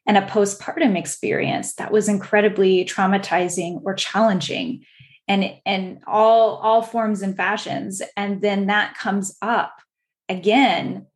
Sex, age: female, 10-29